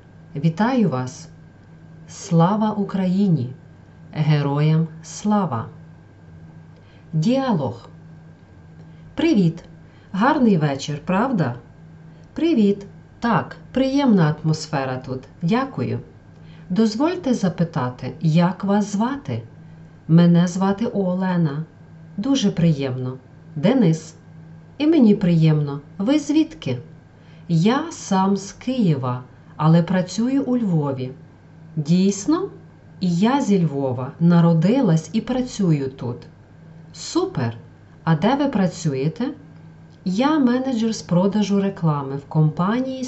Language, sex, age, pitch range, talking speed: Ukrainian, female, 40-59, 150-210 Hz, 85 wpm